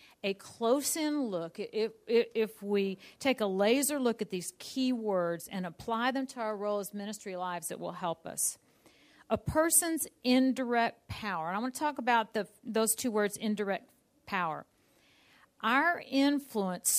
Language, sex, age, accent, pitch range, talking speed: English, female, 50-69, American, 195-245 Hz, 150 wpm